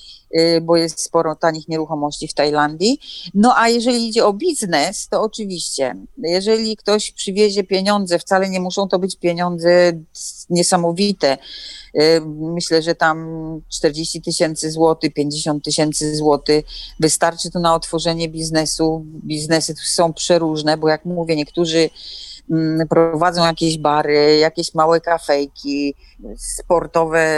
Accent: native